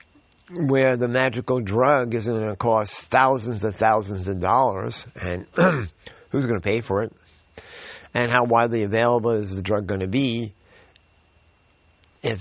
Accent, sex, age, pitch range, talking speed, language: American, male, 50-69, 85-115 Hz, 150 wpm, English